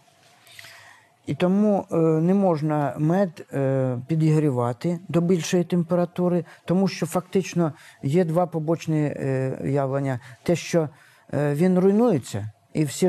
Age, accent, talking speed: 50-69, native, 100 wpm